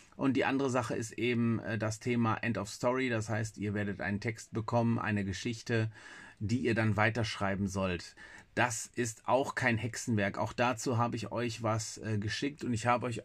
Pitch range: 105-120 Hz